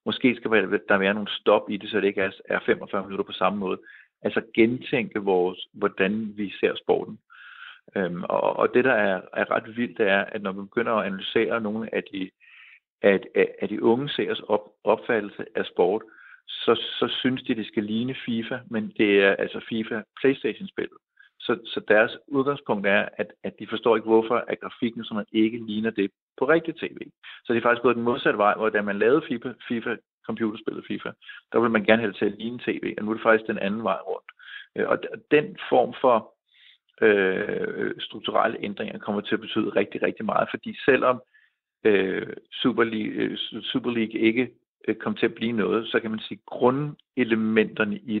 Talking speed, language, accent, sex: 190 wpm, Danish, native, male